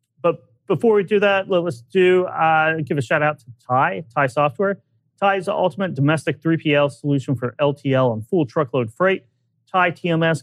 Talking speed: 180 wpm